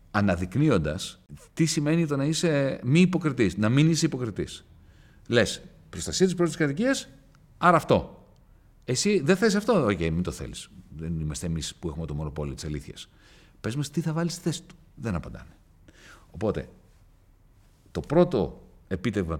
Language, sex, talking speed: Greek, male, 160 wpm